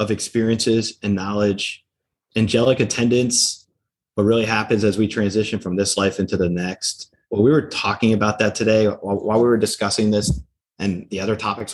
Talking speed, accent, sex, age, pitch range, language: 175 wpm, American, male, 30-49, 95-110 Hz, English